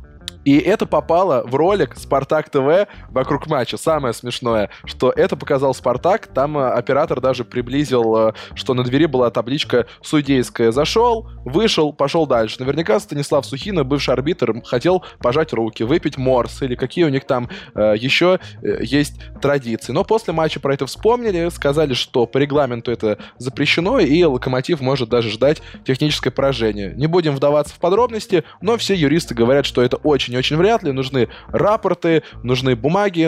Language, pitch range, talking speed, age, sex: Russian, 120-155 Hz, 155 wpm, 20-39, male